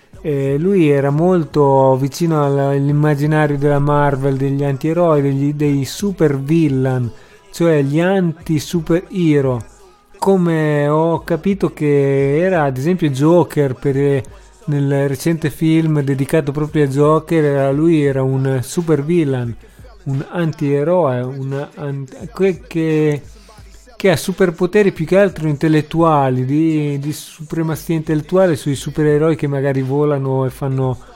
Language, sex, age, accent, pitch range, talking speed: Italian, male, 40-59, native, 140-170 Hz, 115 wpm